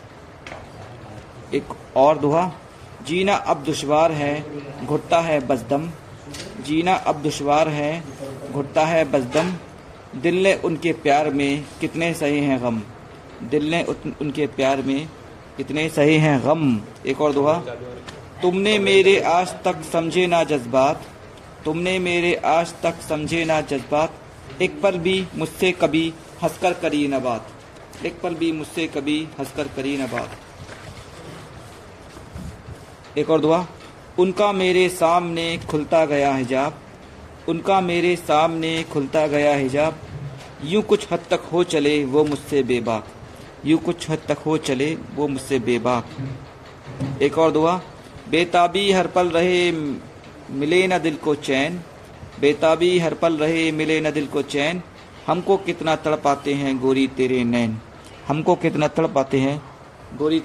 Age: 50-69